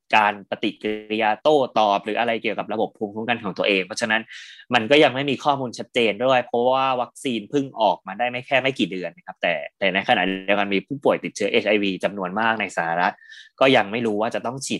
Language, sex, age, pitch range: Thai, male, 20-39, 95-130 Hz